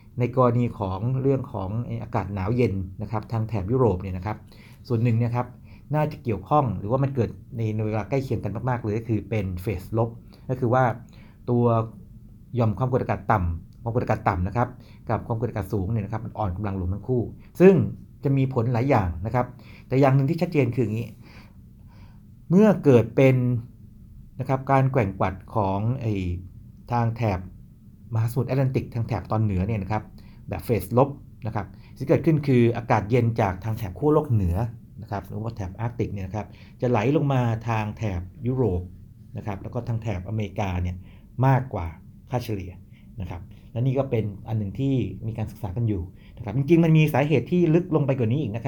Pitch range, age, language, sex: 105-125 Hz, 60-79, Thai, male